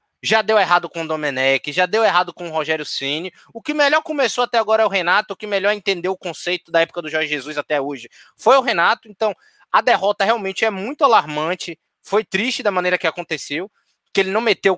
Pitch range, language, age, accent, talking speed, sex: 180-250 Hz, Portuguese, 20-39, Brazilian, 225 wpm, male